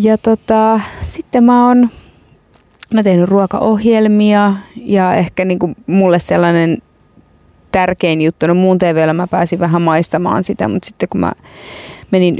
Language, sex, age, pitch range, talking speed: Finnish, female, 20-39, 160-190 Hz, 140 wpm